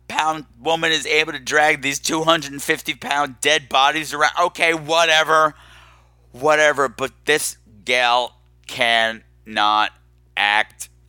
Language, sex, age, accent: English, male, 50-69, American